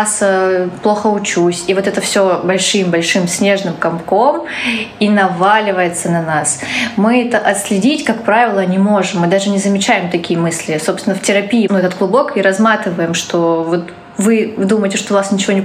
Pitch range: 185-220 Hz